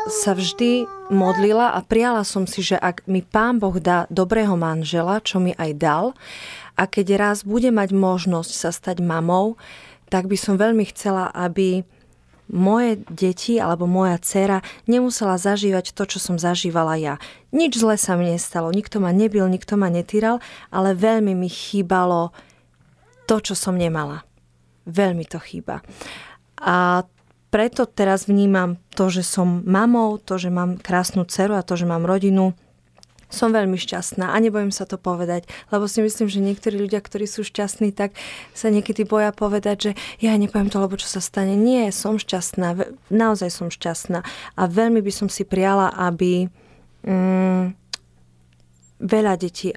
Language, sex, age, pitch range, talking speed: Slovak, female, 30-49, 180-210 Hz, 160 wpm